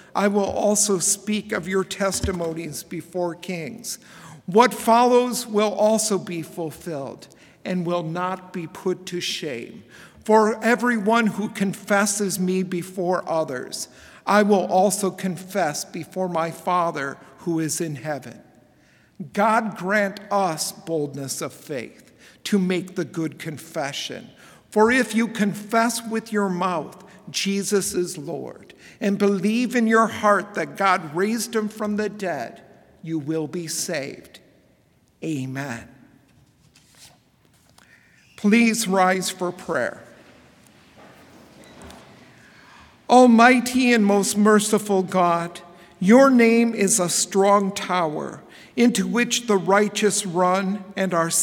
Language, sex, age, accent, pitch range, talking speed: English, male, 50-69, American, 175-210 Hz, 115 wpm